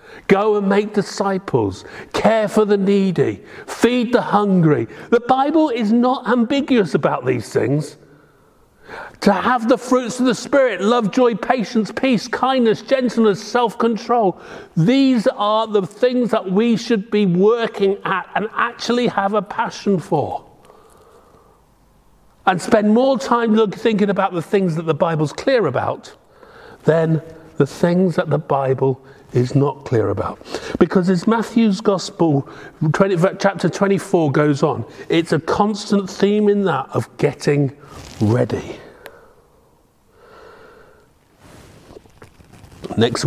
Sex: male